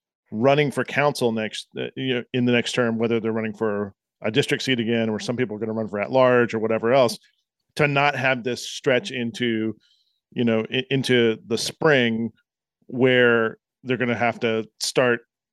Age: 40-59